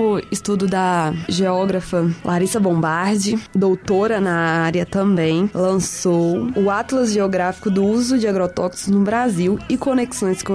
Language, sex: Portuguese, female